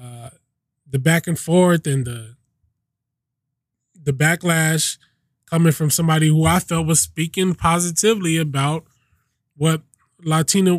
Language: English